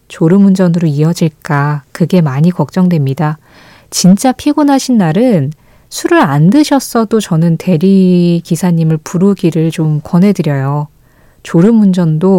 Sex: female